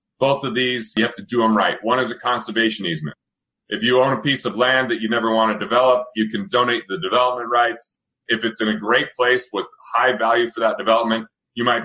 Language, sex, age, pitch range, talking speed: English, male, 30-49, 110-125 Hz, 240 wpm